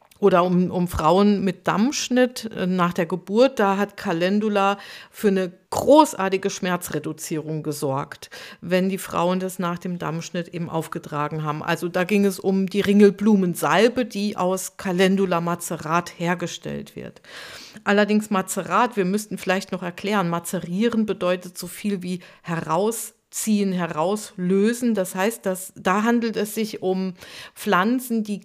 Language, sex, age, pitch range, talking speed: German, female, 50-69, 180-220 Hz, 135 wpm